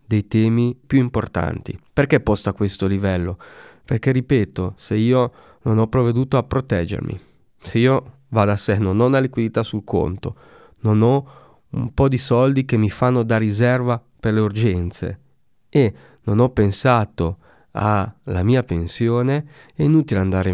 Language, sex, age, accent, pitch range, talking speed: Italian, male, 30-49, native, 100-135 Hz, 160 wpm